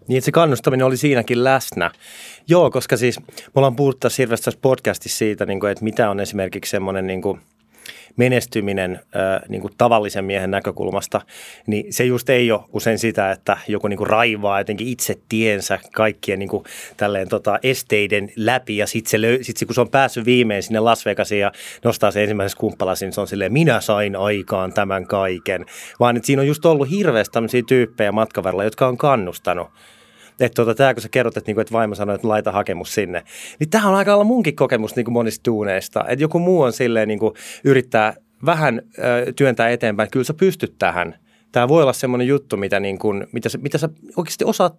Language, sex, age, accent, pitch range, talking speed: Finnish, male, 30-49, native, 105-135 Hz, 190 wpm